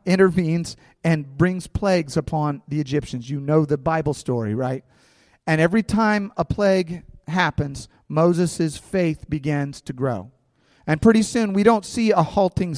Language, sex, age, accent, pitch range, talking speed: English, male, 40-59, American, 135-175 Hz, 150 wpm